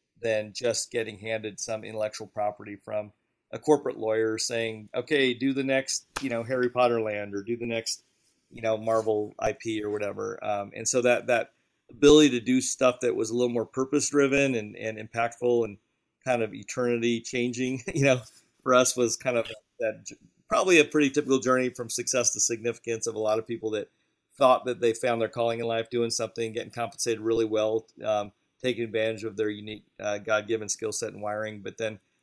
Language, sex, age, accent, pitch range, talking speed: English, male, 40-59, American, 110-125 Hz, 195 wpm